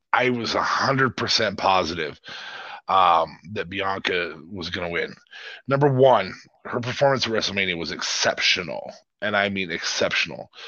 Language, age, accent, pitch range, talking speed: English, 30-49, American, 100-140 Hz, 140 wpm